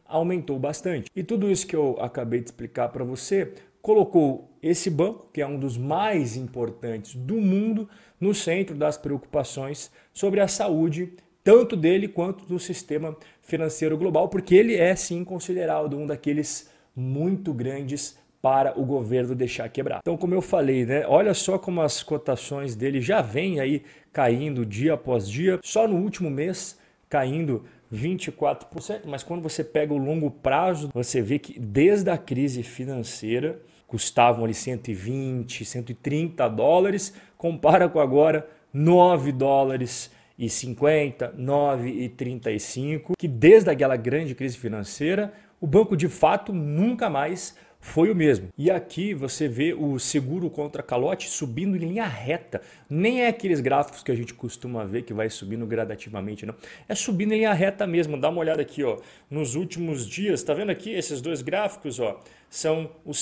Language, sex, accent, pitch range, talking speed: Portuguese, male, Brazilian, 130-180 Hz, 160 wpm